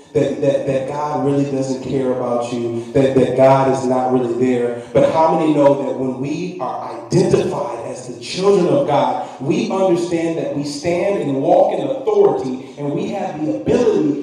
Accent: American